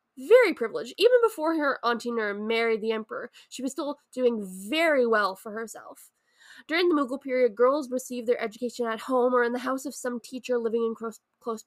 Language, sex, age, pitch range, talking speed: English, female, 20-39, 225-285 Hz, 195 wpm